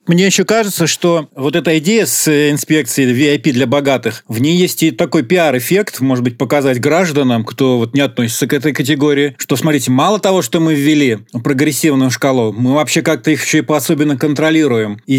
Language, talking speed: Russian, 185 wpm